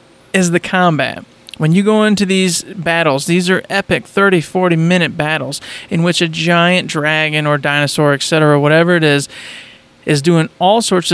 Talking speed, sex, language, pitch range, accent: 160 wpm, male, English, 150-185 Hz, American